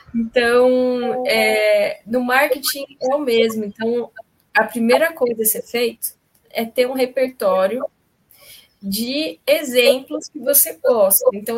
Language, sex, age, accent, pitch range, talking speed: Portuguese, female, 10-29, Brazilian, 220-275 Hz, 120 wpm